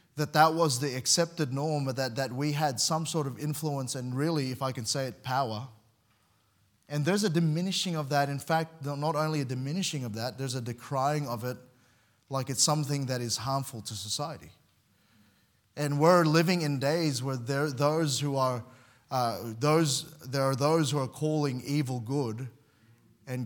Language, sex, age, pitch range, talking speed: English, male, 30-49, 125-155 Hz, 180 wpm